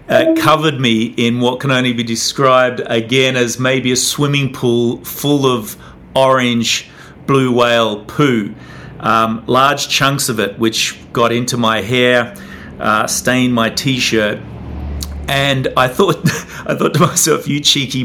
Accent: Australian